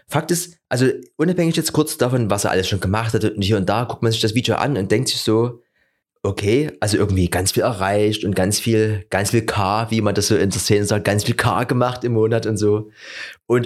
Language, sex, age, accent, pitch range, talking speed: German, male, 30-49, German, 105-135 Hz, 245 wpm